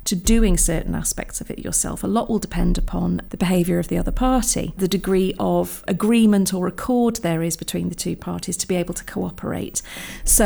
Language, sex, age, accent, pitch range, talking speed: English, female, 40-59, British, 175-205 Hz, 205 wpm